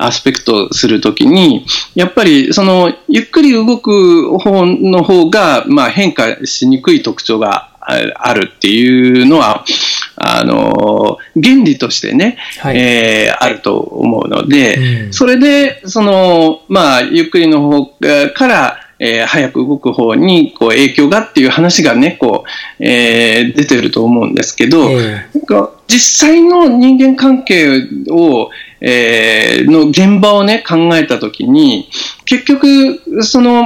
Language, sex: Japanese, male